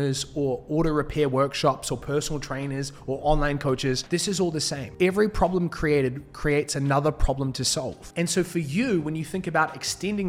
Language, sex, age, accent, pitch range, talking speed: English, male, 20-39, Australian, 135-170 Hz, 185 wpm